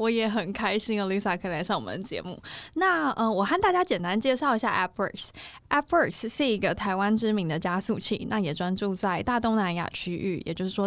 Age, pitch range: 20-39, 180-230 Hz